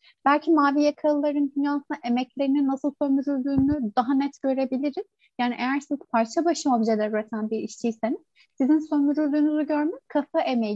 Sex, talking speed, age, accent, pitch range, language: female, 135 wpm, 30-49, native, 255-305 Hz, Turkish